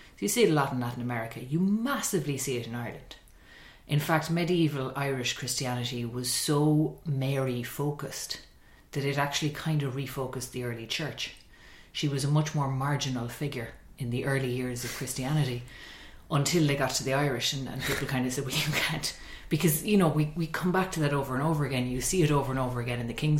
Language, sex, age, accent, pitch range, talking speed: English, female, 30-49, Irish, 125-155 Hz, 215 wpm